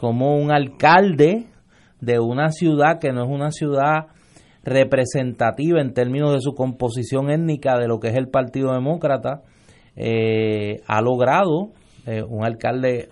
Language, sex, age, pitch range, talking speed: Spanish, male, 30-49, 115-155 Hz, 140 wpm